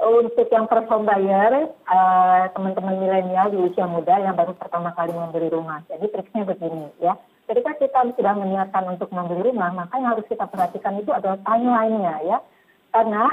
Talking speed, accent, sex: 160 wpm, native, female